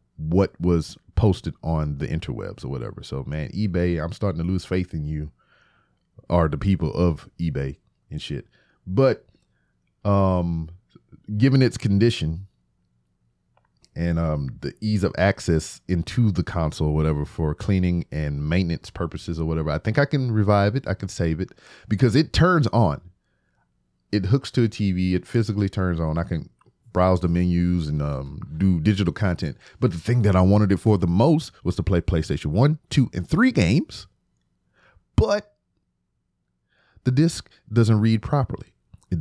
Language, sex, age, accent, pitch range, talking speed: English, male, 30-49, American, 80-110 Hz, 165 wpm